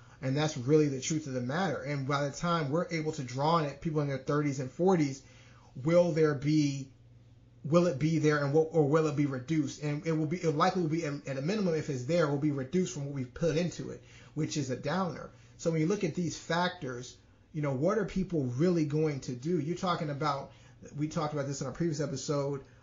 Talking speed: 240 wpm